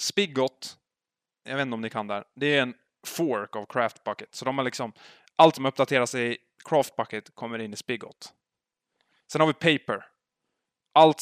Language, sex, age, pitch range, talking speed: Swedish, male, 20-39, 110-135 Hz, 175 wpm